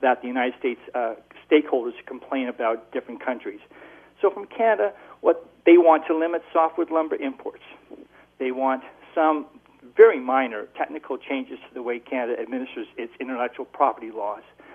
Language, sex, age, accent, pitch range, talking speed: English, male, 50-69, American, 135-230 Hz, 150 wpm